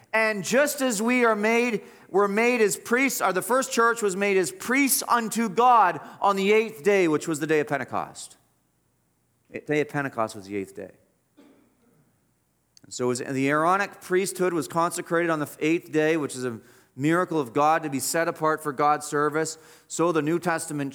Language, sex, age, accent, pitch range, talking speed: English, male, 40-59, American, 130-180 Hz, 190 wpm